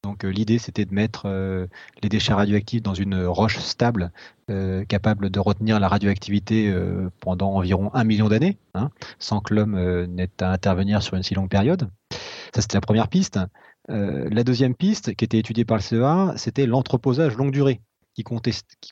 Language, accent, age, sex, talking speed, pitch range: French, French, 30-49, male, 185 wpm, 100-125 Hz